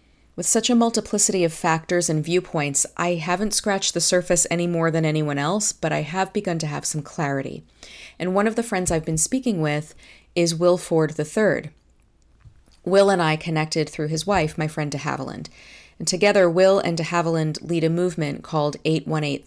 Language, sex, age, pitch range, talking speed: English, female, 30-49, 155-185 Hz, 190 wpm